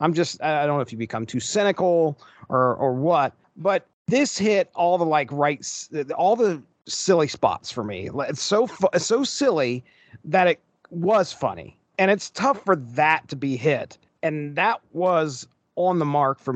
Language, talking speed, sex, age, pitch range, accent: English, 180 wpm, male, 40-59, 140-190 Hz, American